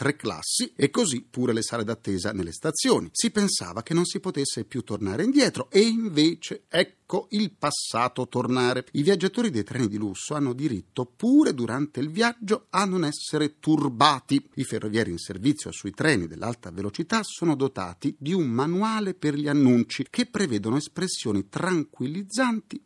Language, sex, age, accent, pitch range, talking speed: Italian, male, 40-59, native, 115-195 Hz, 160 wpm